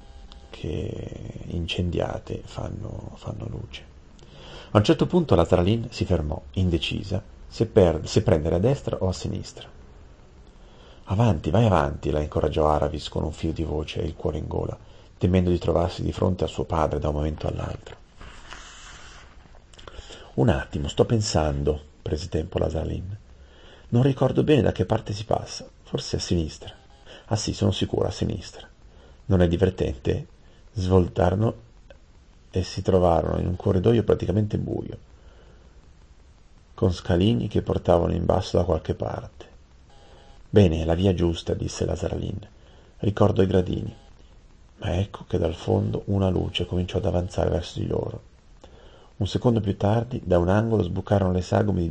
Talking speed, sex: 155 wpm, male